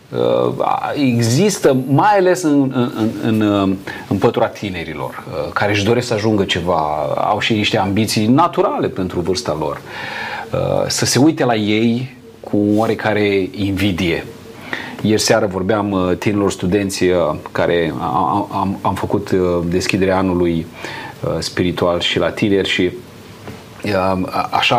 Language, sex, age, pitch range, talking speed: Romanian, male, 30-49, 95-125 Hz, 110 wpm